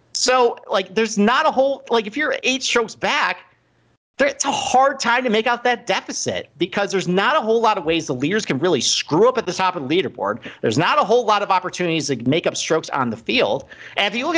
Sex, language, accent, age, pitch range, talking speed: male, English, American, 40-59, 180-245 Hz, 245 wpm